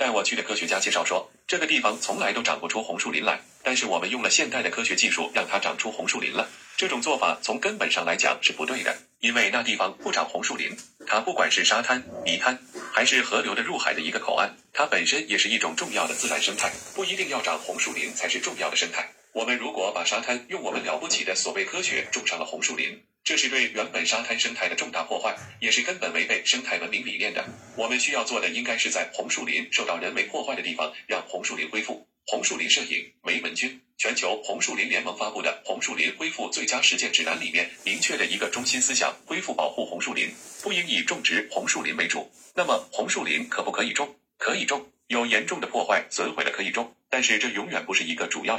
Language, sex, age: Chinese, male, 30-49